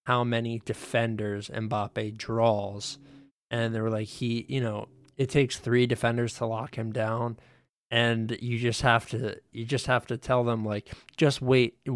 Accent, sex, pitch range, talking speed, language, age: American, male, 110-125 Hz, 170 wpm, English, 20-39